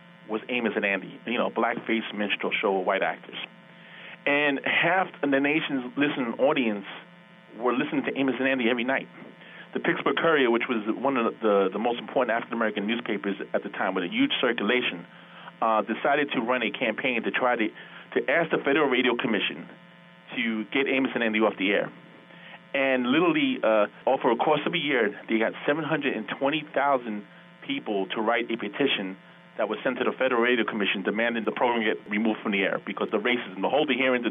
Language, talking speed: English, 195 wpm